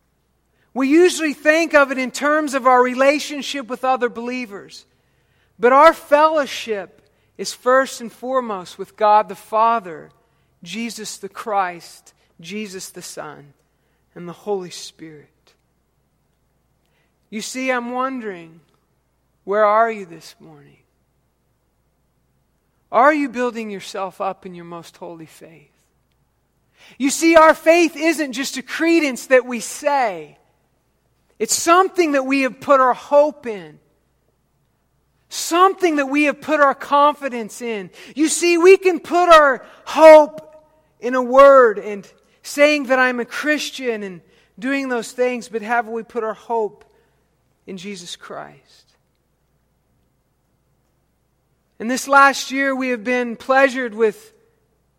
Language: English